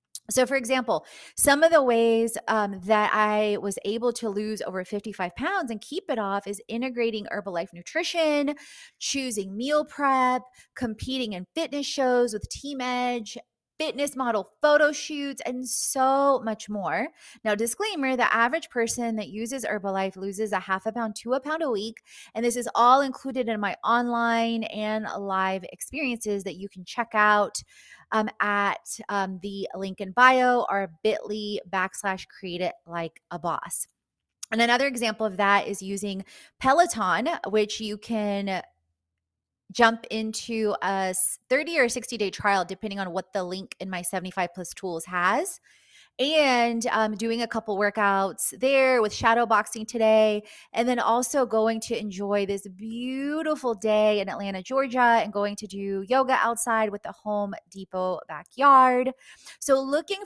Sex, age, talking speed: female, 20-39, 155 wpm